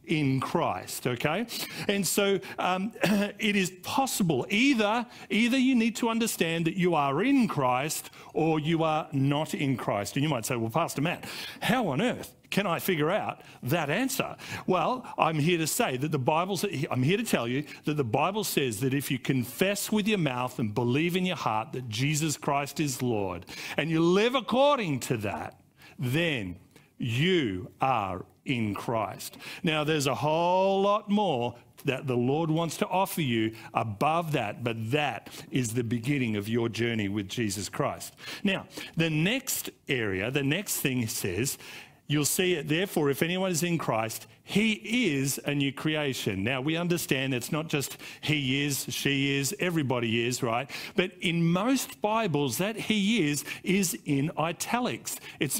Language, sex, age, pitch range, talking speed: English, male, 50-69, 130-190 Hz, 175 wpm